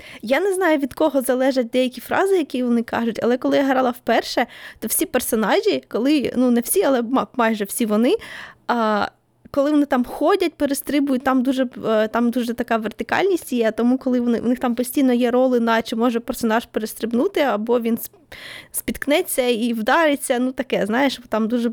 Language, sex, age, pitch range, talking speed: Ukrainian, female, 20-39, 240-295 Hz, 170 wpm